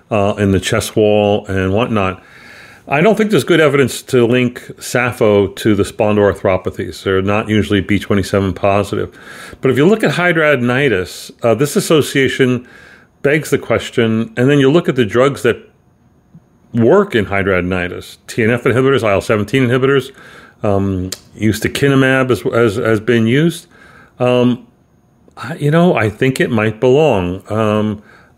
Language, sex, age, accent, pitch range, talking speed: English, male, 40-59, American, 110-135 Hz, 145 wpm